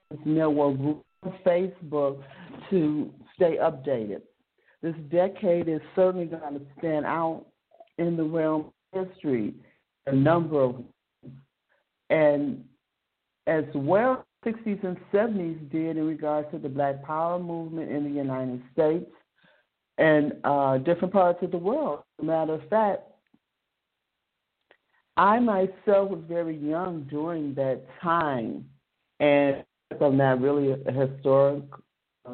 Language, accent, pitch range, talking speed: English, American, 145-190 Hz, 125 wpm